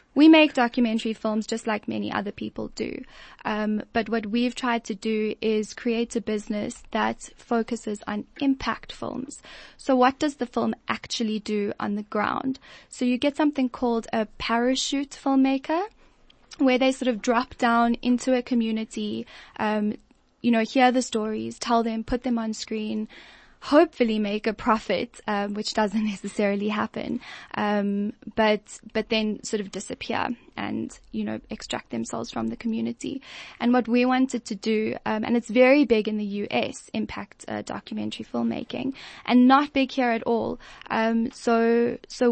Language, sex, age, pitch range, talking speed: English, female, 10-29, 215-250 Hz, 170 wpm